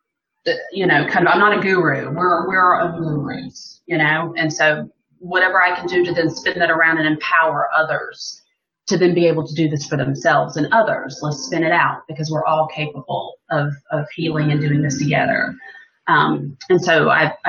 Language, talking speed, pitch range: English, 205 wpm, 155-180 Hz